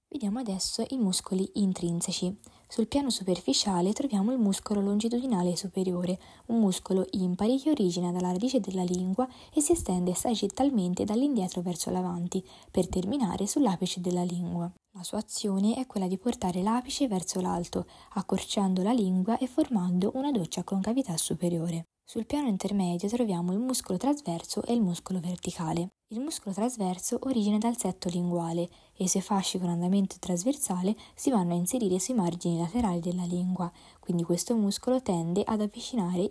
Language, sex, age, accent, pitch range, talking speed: Italian, female, 20-39, native, 175-220 Hz, 155 wpm